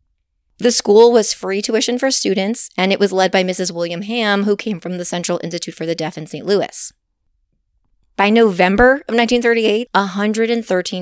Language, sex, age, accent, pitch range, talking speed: English, female, 30-49, American, 165-210 Hz, 170 wpm